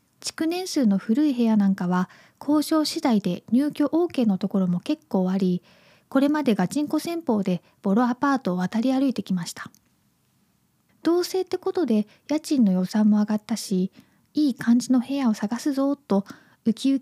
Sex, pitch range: female, 200-280 Hz